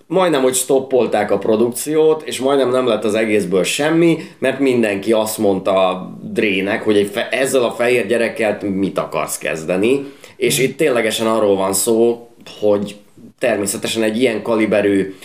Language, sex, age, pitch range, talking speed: Hungarian, male, 20-39, 100-130 Hz, 155 wpm